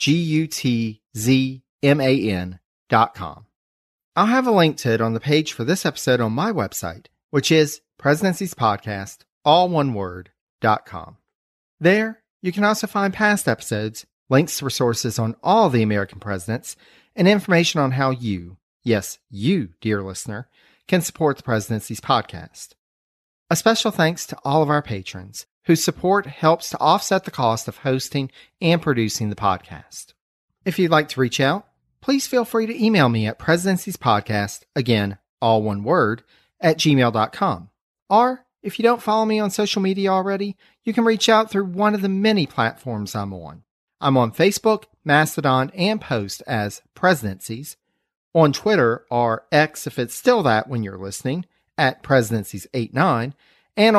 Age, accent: 40-59, American